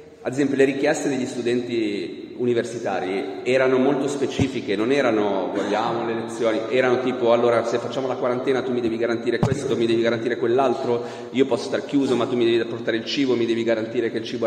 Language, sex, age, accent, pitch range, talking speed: Italian, male, 40-59, native, 115-140 Hz, 200 wpm